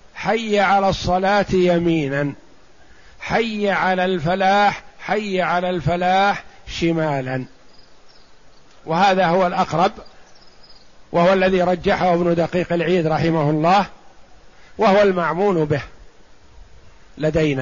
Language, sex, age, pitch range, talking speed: Arabic, male, 50-69, 160-195 Hz, 90 wpm